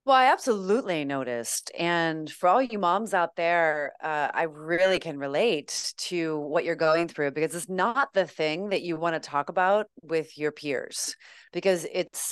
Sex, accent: female, American